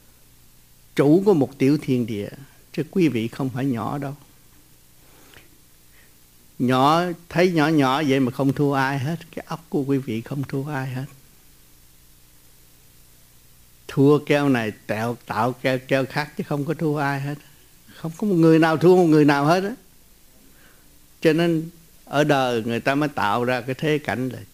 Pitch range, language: 110-155 Hz, Vietnamese